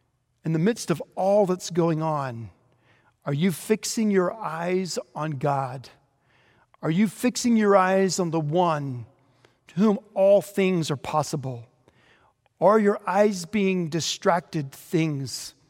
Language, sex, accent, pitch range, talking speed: English, male, American, 135-185 Hz, 135 wpm